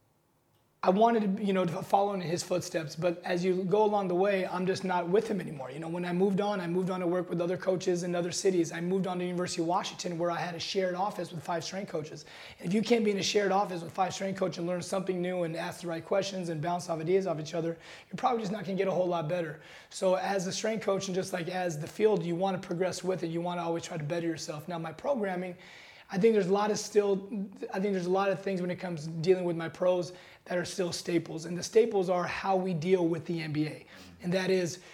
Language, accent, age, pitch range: English, American, 30-49, 170-195 Hz